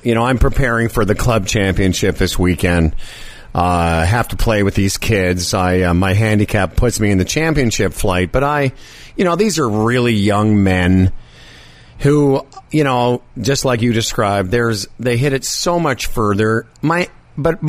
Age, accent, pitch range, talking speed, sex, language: 50-69, American, 105-150 Hz, 175 wpm, male, English